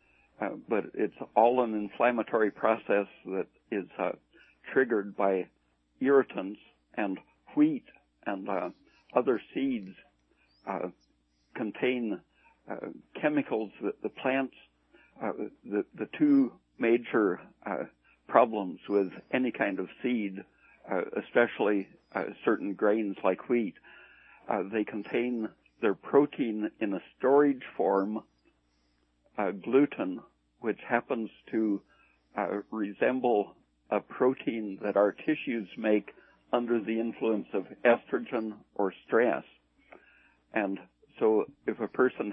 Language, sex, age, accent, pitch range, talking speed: English, male, 60-79, American, 95-120 Hz, 110 wpm